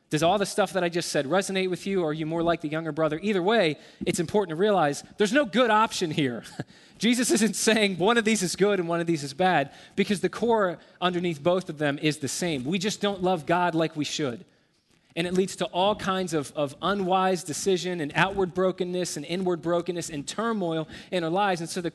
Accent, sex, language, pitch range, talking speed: American, male, English, 155-195 Hz, 235 wpm